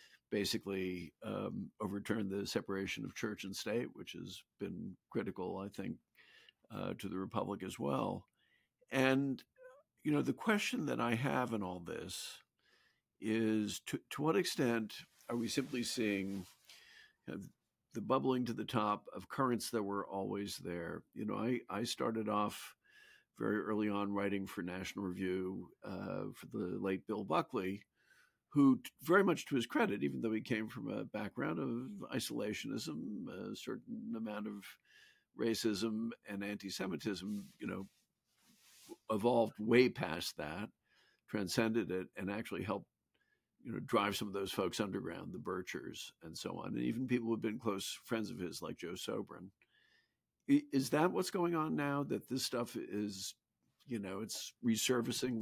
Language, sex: English, male